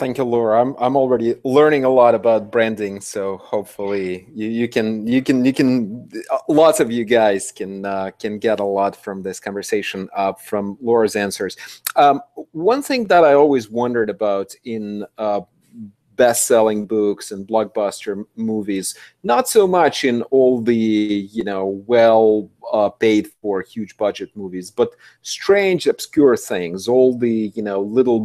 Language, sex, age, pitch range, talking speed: English, male, 30-49, 105-135 Hz, 165 wpm